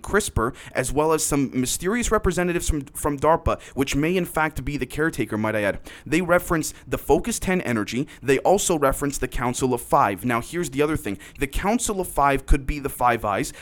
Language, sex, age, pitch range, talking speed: English, male, 30-49, 120-160 Hz, 205 wpm